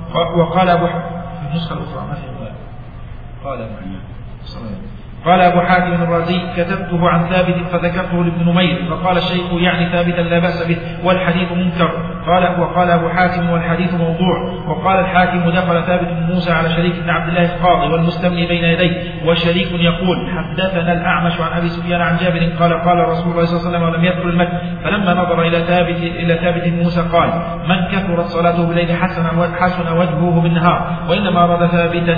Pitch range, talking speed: 170-180 Hz, 145 wpm